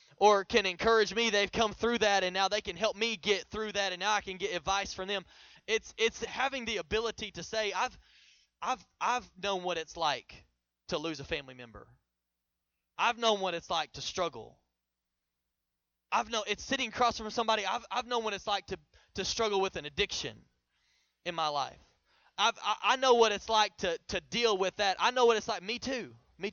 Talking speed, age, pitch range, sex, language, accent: 210 wpm, 20-39, 145-220 Hz, male, English, American